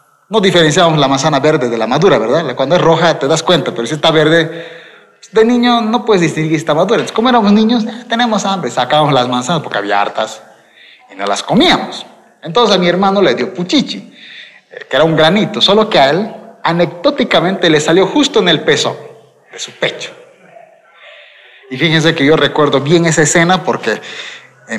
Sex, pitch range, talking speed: male, 155-220 Hz, 190 wpm